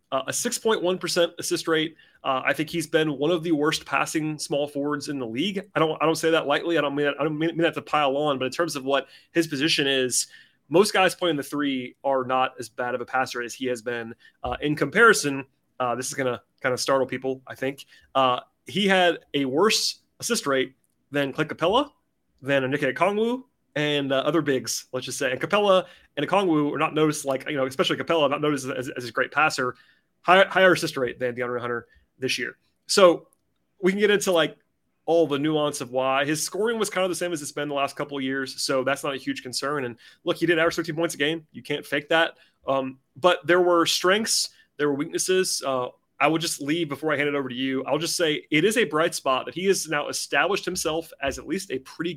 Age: 30-49